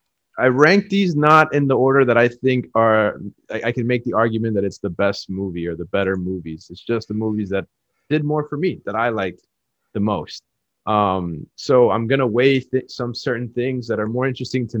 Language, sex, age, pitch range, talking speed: English, male, 30-49, 100-130 Hz, 220 wpm